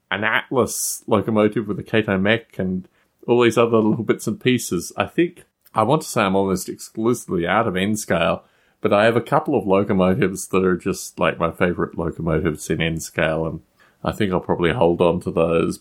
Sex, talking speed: male, 195 wpm